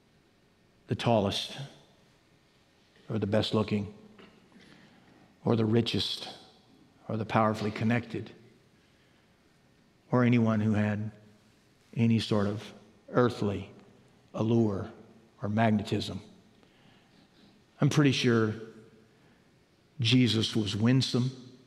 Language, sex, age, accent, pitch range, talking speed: English, male, 50-69, American, 105-125 Hz, 80 wpm